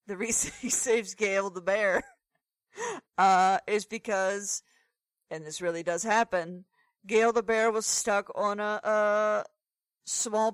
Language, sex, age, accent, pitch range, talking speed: English, female, 40-59, American, 165-220 Hz, 135 wpm